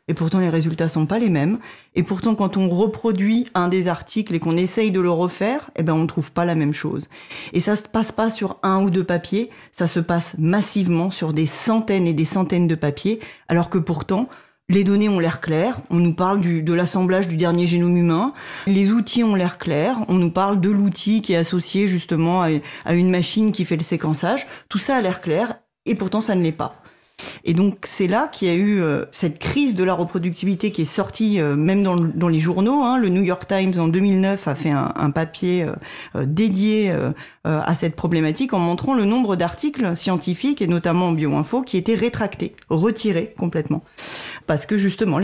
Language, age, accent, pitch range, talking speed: French, 30-49, French, 170-210 Hz, 205 wpm